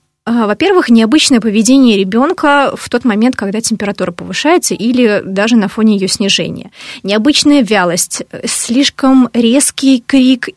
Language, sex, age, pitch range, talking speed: Russian, female, 20-39, 200-250 Hz, 120 wpm